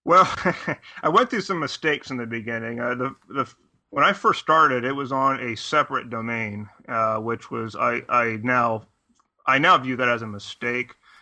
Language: English